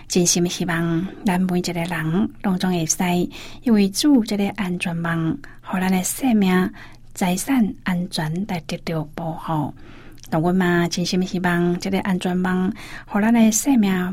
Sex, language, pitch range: female, Chinese, 175-225 Hz